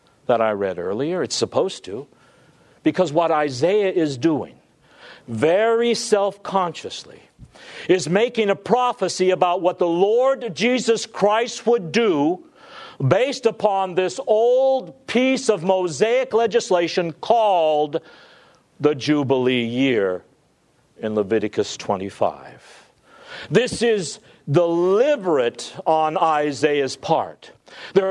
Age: 50-69